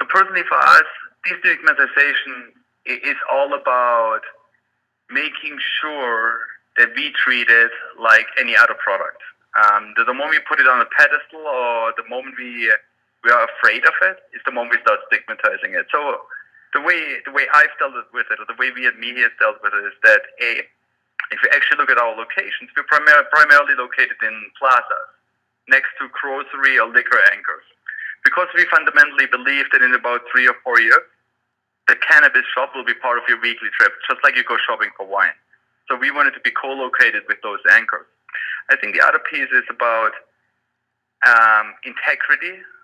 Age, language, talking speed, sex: 30-49, English, 180 wpm, male